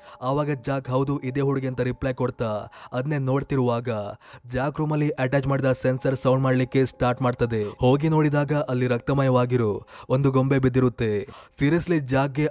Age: 20-39